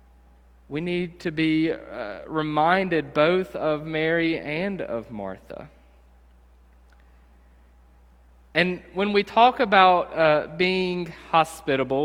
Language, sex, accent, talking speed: English, male, American, 100 wpm